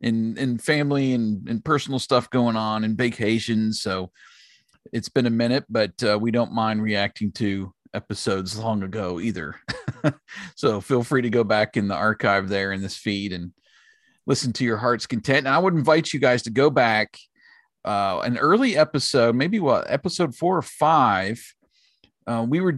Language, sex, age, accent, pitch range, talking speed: English, male, 40-59, American, 110-145 Hz, 180 wpm